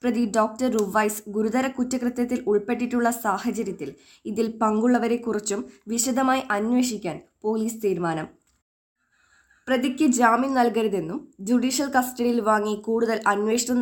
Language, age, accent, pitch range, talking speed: Malayalam, 20-39, native, 200-245 Hz, 90 wpm